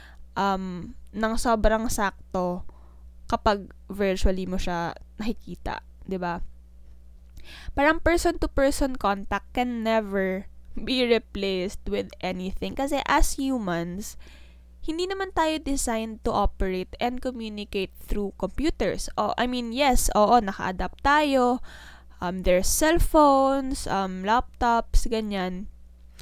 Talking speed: 105 wpm